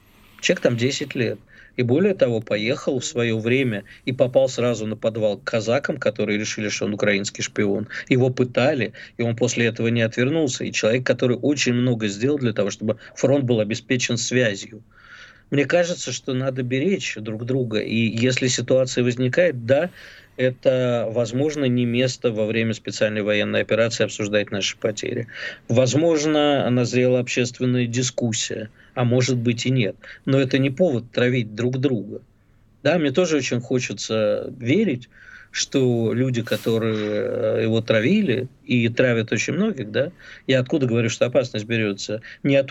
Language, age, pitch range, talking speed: Russian, 50-69, 110-135 Hz, 155 wpm